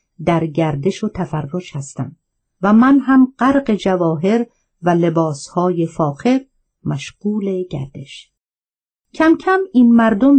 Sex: female